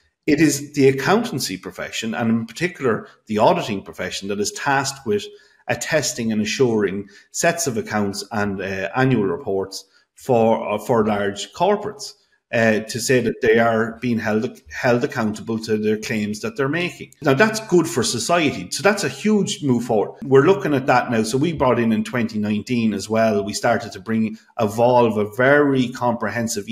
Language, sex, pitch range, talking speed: English, male, 105-145 Hz, 175 wpm